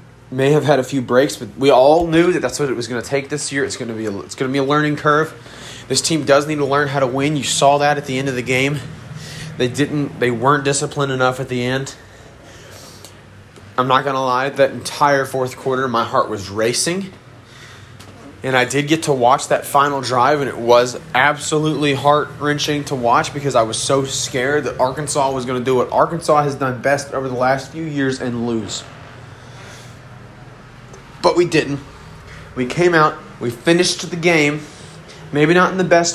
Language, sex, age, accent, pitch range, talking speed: English, male, 30-49, American, 125-150 Hz, 205 wpm